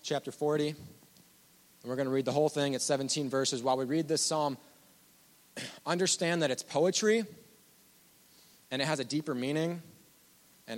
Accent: American